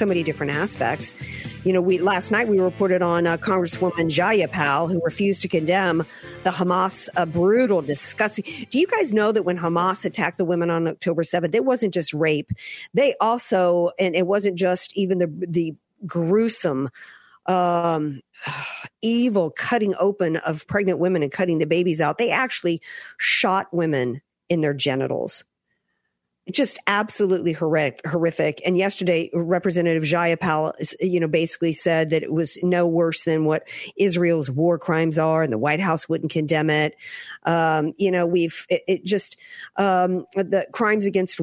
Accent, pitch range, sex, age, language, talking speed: American, 160-185 Hz, female, 50-69, English, 160 wpm